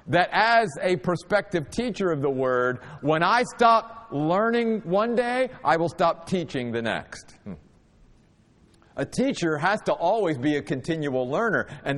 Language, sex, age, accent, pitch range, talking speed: English, male, 50-69, American, 155-230 Hz, 155 wpm